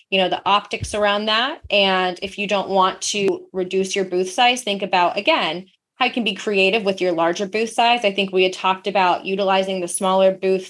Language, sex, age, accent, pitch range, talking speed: English, female, 20-39, American, 180-215 Hz, 220 wpm